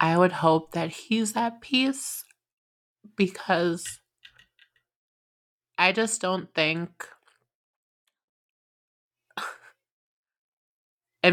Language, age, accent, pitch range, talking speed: English, 20-39, American, 150-180 Hz, 70 wpm